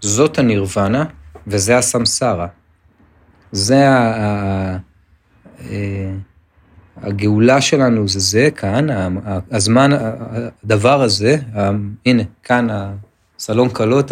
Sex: male